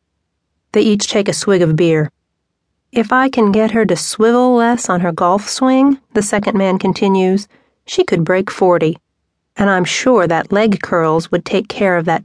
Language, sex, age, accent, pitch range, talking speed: English, female, 40-59, American, 175-225 Hz, 185 wpm